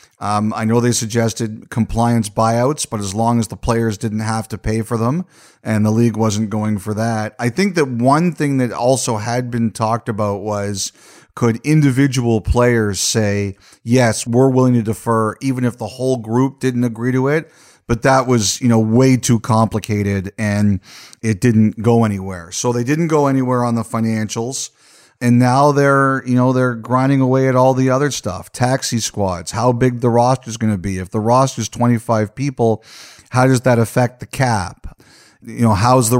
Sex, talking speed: male, 190 wpm